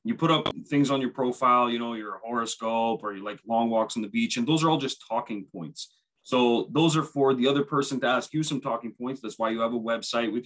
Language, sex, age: English, male, 30-49